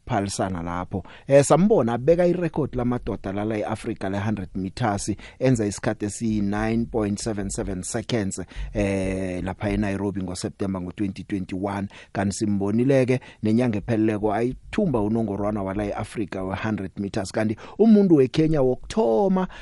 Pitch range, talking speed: 100-125 Hz, 140 wpm